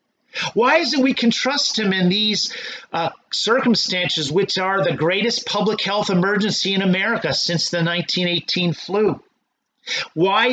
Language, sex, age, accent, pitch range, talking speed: English, male, 40-59, American, 175-235 Hz, 140 wpm